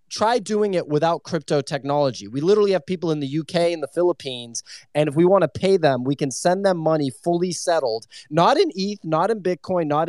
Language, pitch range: English, 140-170 Hz